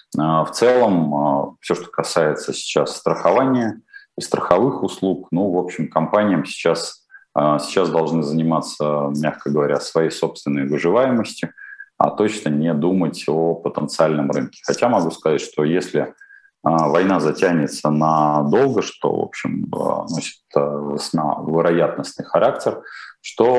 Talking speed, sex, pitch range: 115 wpm, male, 80-105 Hz